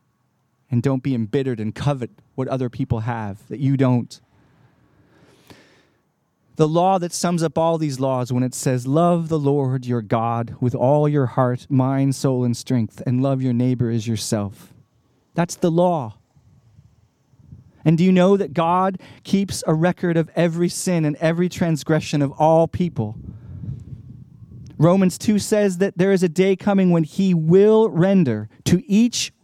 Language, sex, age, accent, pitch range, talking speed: English, male, 30-49, American, 125-175 Hz, 160 wpm